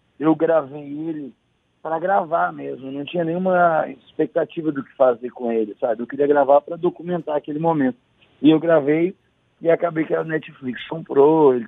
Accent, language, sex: Brazilian, Portuguese, male